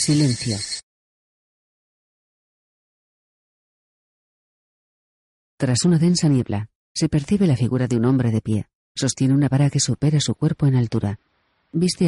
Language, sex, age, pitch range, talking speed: Spanish, female, 40-59, 120-155 Hz, 120 wpm